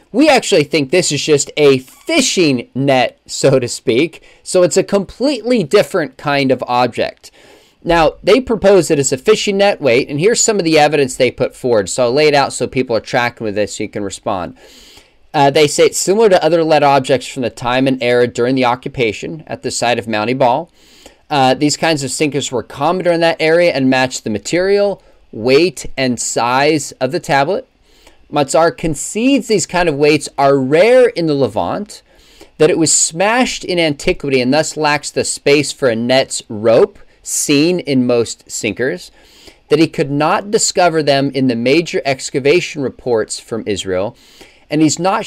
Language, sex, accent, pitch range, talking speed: English, male, American, 130-175 Hz, 190 wpm